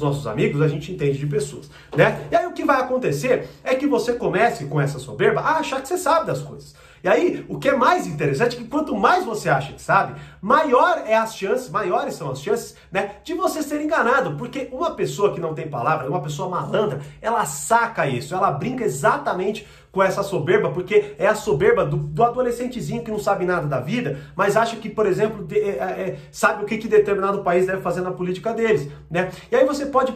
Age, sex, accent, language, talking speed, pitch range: 40-59, male, Brazilian, Portuguese, 215 wpm, 145-215 Hz